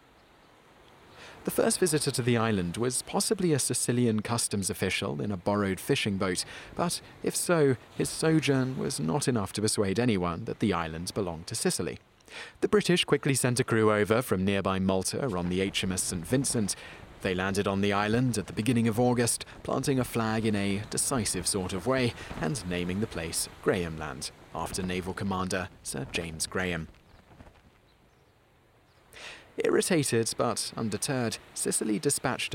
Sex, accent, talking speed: male, British, 155 wpm